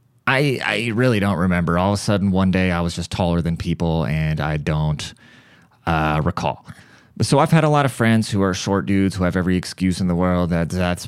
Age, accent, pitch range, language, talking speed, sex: 30-49, American, 85-115 Hz, English, 230 wpm, male